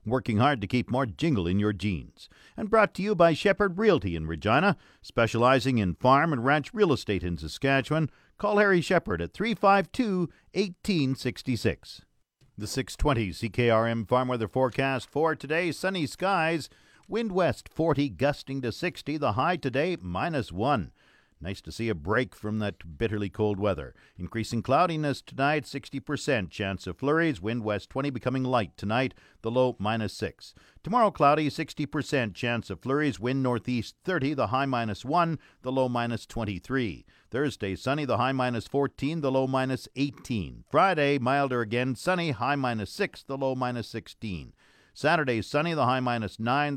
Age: 50-69